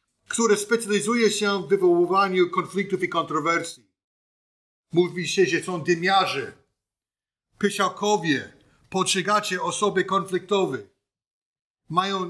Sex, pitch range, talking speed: male, 165-190 Hz, 90 wpm